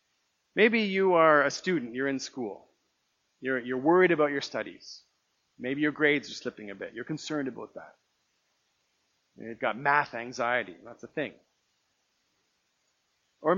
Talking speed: 145 wpm